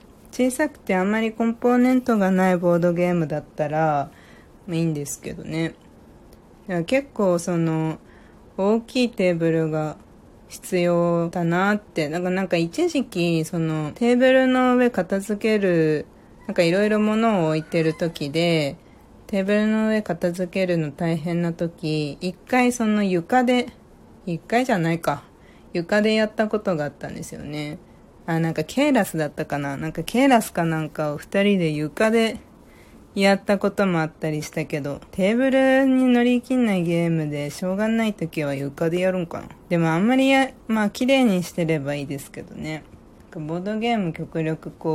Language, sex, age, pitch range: Japanese, female, 40-59, 160-215 Hz